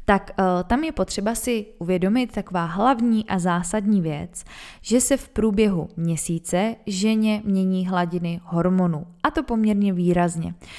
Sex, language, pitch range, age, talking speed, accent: female, Czech, 175-205 Hz, 20-39, 135 wpm, native